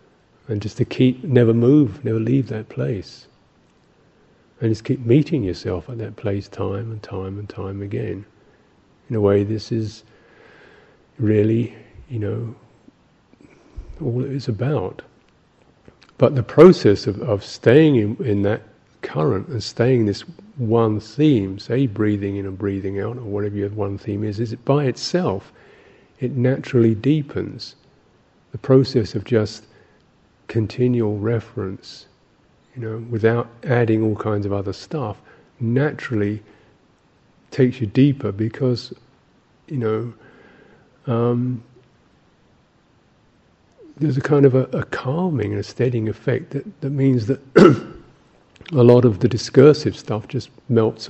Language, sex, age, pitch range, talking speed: English, male, 50-69, 105-130 Hz, 135 wpm